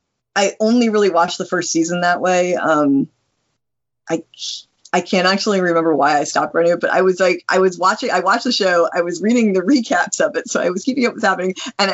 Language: English